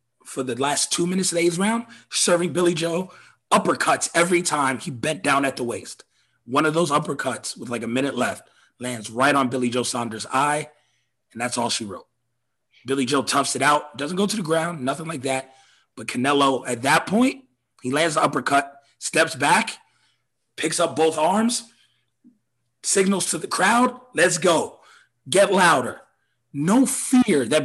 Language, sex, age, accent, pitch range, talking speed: English, male, 30-49, American, 125-175 Hz, 175 wpm